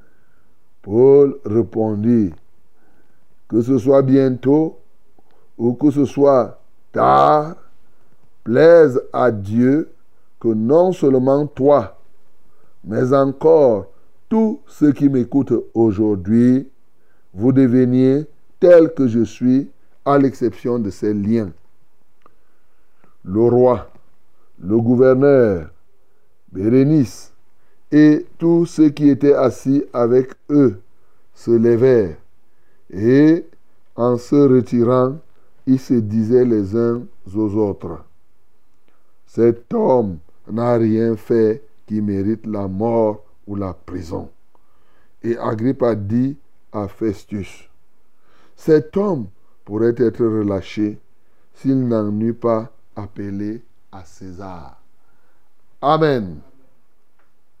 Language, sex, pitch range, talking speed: French, male, 105-135 Hz, 100 wpm